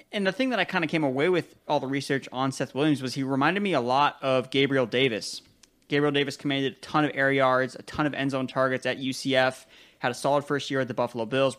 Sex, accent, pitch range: male, American, 120-145 Hz